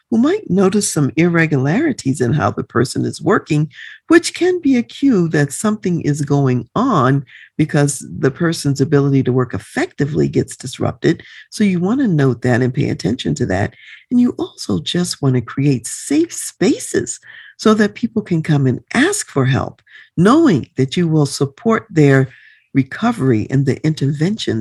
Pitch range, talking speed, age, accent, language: 130-200 Hz, 170 wpm, 50-69, American, English